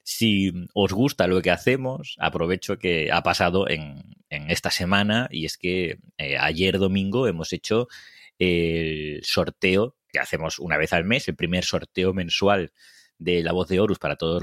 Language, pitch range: Spanish, 85-100 Hz